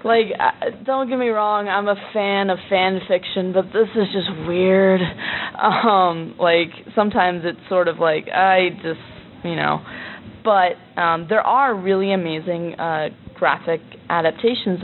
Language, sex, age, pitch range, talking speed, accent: English, female, 20-39, 165-200 Hz, 145 wpm, American